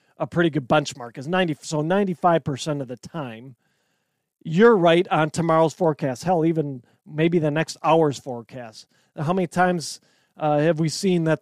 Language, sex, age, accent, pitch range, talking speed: English, male, 40-59, American, 145-180 Hz, 160 wpm